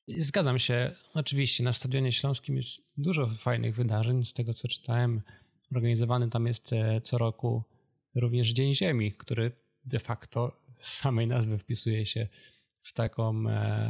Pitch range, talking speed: 110-125 Hz, 140 wpm